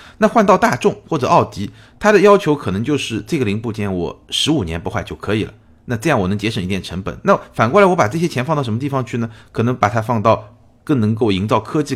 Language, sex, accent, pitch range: Chinese, male, native, 95-135 Hz